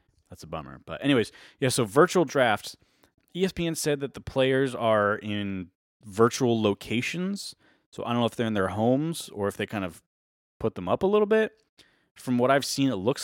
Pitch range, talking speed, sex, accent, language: 85-110 Hz, 200 wpm, male, American, English